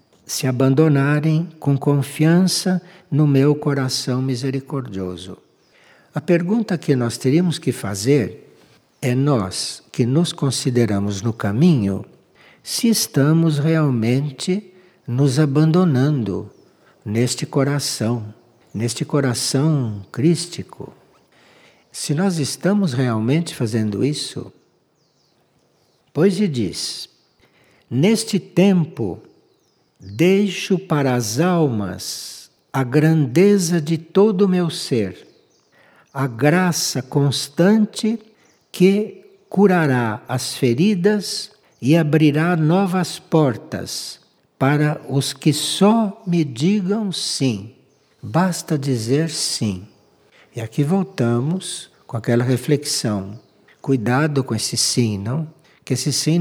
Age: 60-79